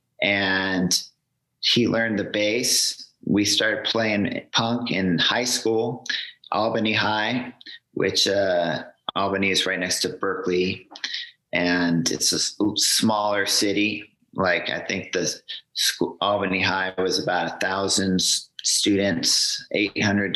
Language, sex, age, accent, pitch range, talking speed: English, male, 40-59, American, 95-110 Hz, 120 wpm